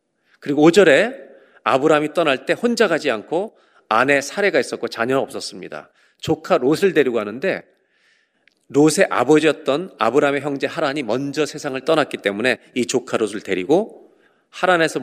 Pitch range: 130-185 Hz